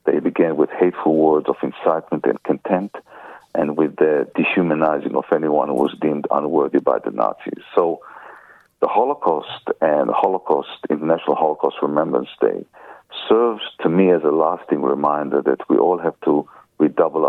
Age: 50-69